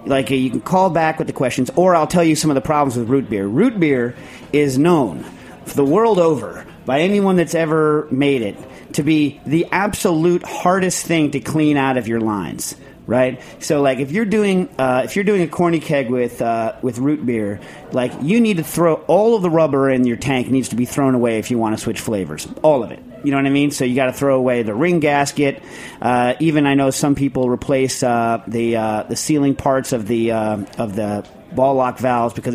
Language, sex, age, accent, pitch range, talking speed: English, male, 40-59, American, 125-160 Hz, 230 wpm